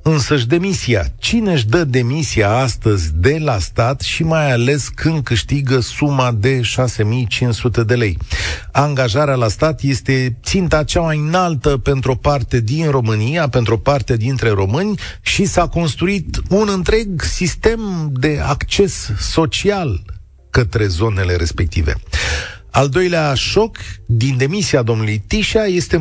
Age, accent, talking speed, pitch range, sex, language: 40-59, native, 135 wpm, 110-185 Hz, male, Romanian